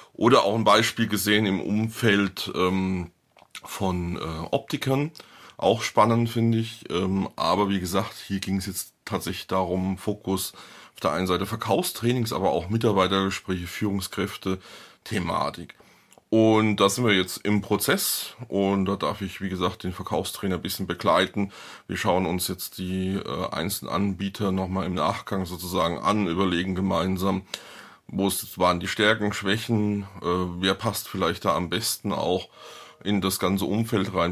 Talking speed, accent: 150 wpm, German